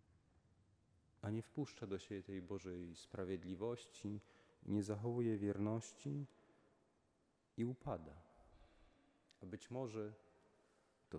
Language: Polish